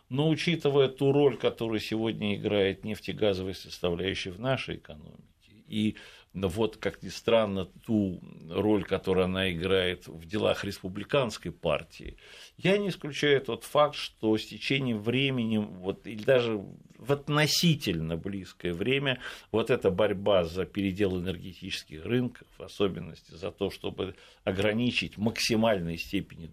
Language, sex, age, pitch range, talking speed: Russian, male, 60-79, 95-125 Hz, 130 wpm